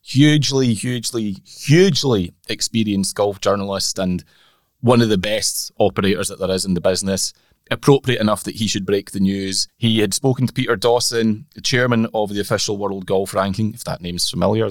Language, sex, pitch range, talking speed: English, male, 95-120 Hz, 180 wpm